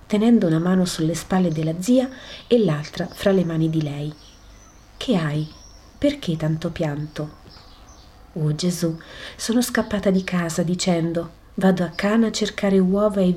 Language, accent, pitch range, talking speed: Italian, native, 160-200 Hz, 150 wpm